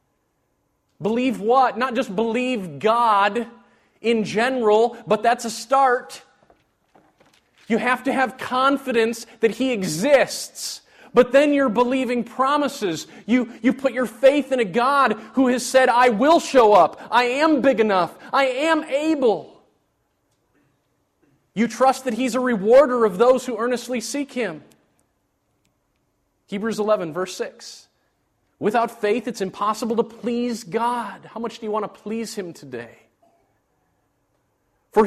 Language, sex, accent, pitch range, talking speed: English, male, American, 210-255 Hz, 135 wpm